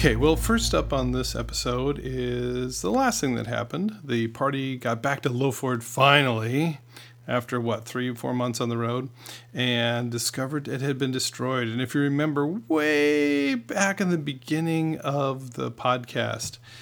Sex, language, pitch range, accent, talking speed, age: male, English, 120-150 Hz, American, 170 wpm, 40-59